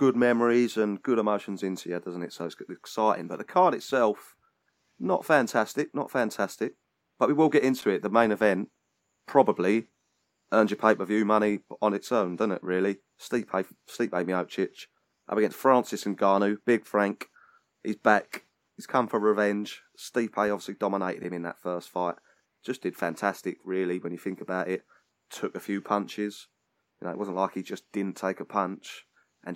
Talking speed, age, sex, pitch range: 180 wpm, 30-49, male, 95-110 Hz